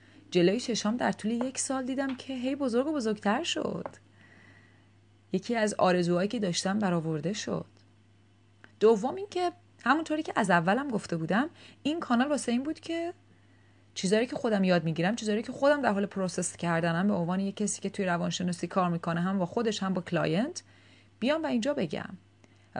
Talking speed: 170 wpm